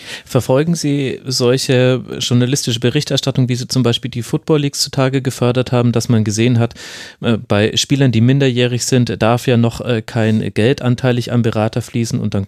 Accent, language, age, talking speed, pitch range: German, German, 30-49, 170 wpm, 110-125 Hz